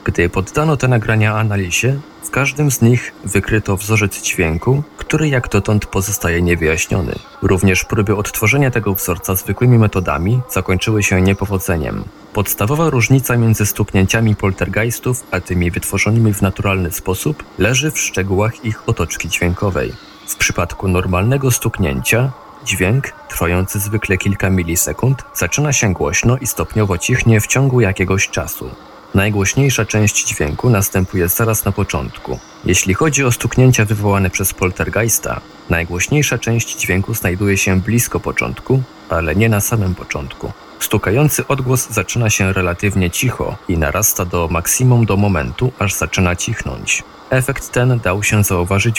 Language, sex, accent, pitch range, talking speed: Polish, male, native, 95-120 Hz, 135 wpm